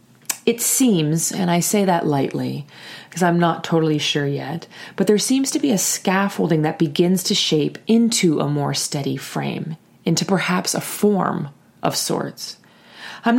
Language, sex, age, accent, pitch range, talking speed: English, female, 30-49, American, 145-200 Hz, 160 wpm